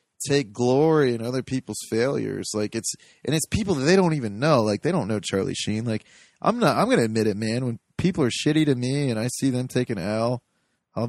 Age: 20-39